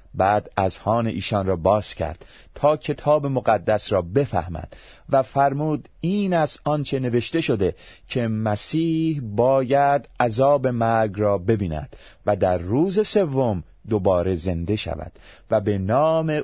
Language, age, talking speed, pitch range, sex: Persian, 30-49, 130 wpm, 95-140 Hz, male